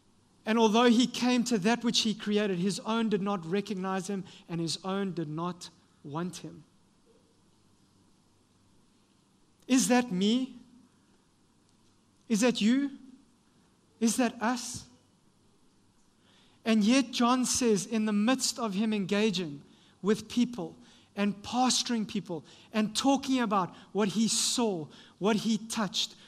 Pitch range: 200-240 Hz